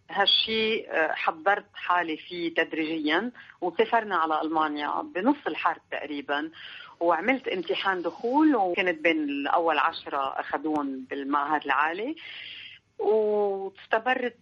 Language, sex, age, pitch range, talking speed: Arabic, female, 40-59, 150-195 Hz, 90 wpm